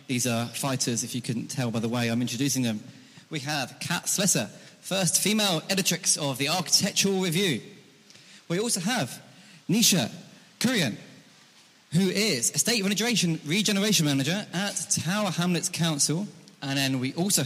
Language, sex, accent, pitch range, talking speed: English, male, British, 135-175 Hz, 150 wpm